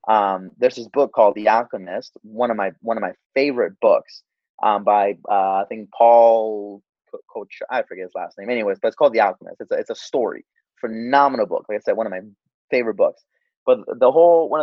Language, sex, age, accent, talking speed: English, male, 30-49, American, 215 wpm